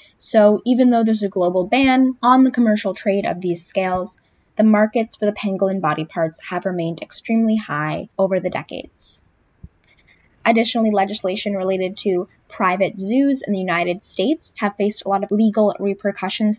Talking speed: 165 wpm